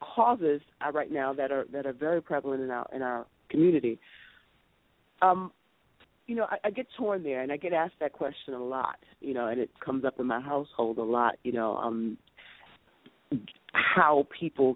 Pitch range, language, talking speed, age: 125-155 Hz, English, 185 wpm, 40-59